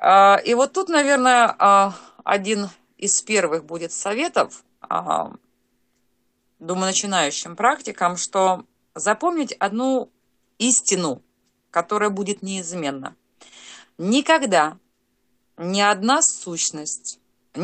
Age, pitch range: 30-49, 180-255 Hz